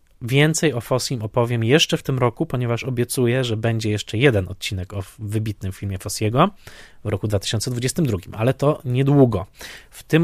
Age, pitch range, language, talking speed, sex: 20-39, 110-140 Hz, Polish, 160 wpm, male